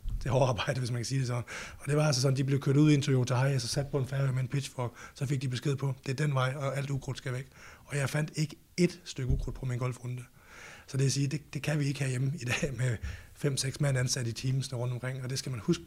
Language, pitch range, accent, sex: Danish, 120-135 Hz, native, male